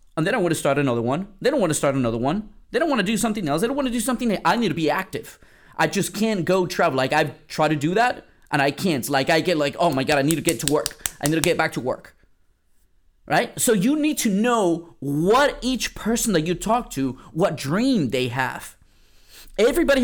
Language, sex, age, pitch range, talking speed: English, male, 30-49, 145-220 Hz, 260 wpm